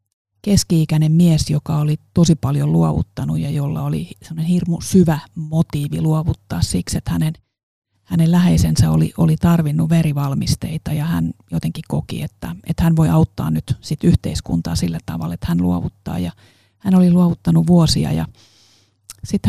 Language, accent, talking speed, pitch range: Finnish, native, 145 wpm, 100-170 Hz